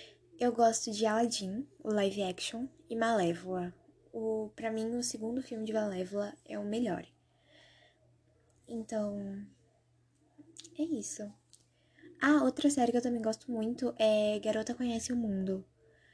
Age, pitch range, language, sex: 10-29, 205-255 Hz, Portuguese, female